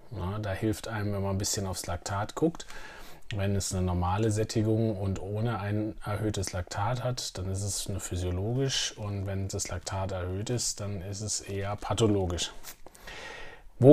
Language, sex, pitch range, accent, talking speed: German, male, 95-125 Hz, German, 165 wpm